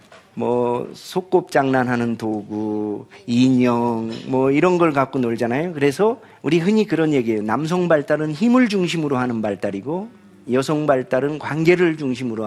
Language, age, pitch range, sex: Korean, 40-59, 135-210 Hz, male